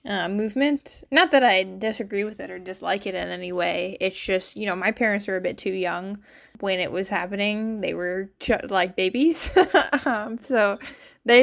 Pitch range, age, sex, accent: 185-230 Hz, 10-29, female, American